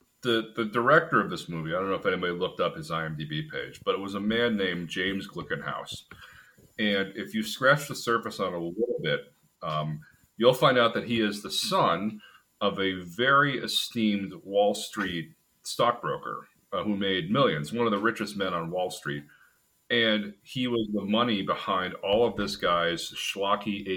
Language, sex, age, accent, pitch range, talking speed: English, male, 40-59, American, 90-120 Hz, 185 wpm